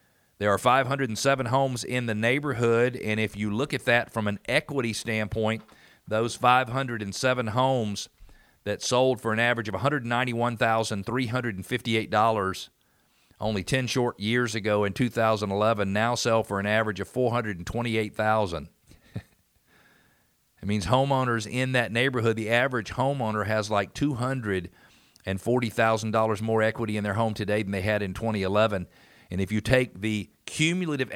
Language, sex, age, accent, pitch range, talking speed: English, male, 50-69, American, 105-125 Hz, 135 wpm